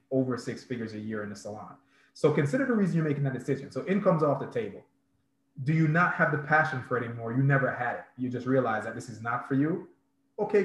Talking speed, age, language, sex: 250 wpm, 20-39, English, male